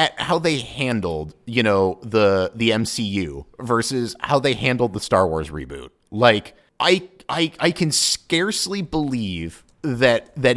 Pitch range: 115-165 Hz